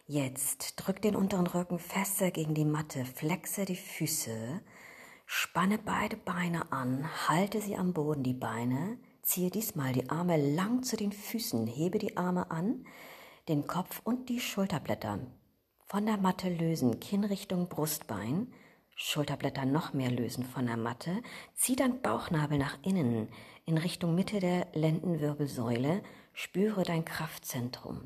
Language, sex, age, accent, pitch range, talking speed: German, female, 40-59, German, 125-185 Hz, 140 wpm